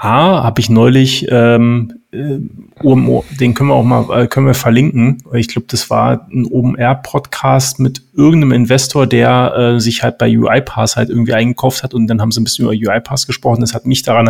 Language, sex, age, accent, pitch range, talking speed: German, male, 30-49, German, 110-130 Hz, 195 wpm